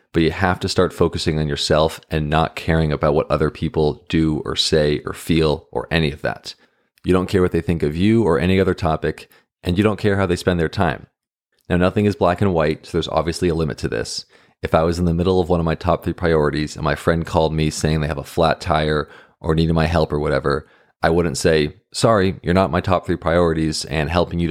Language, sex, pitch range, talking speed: English, male, 80-90 Hz, 245 wpm